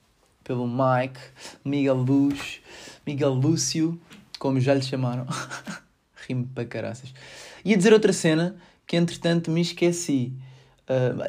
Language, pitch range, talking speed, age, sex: Portuguese, 130-165 Hz, 120 wpm, 20-39, male